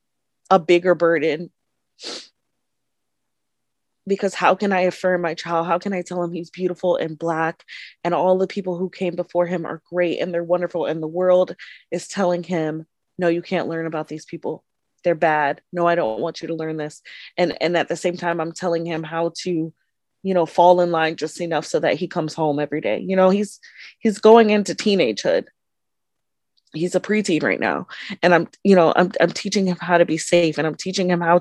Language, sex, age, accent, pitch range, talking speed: English, female, 20-39, American, 165-195 Hz, 210 wpm